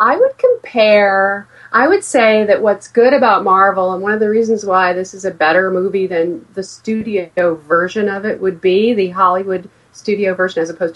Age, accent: 40-59, American